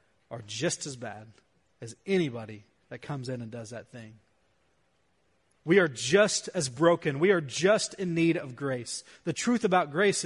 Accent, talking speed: American, 170 wpm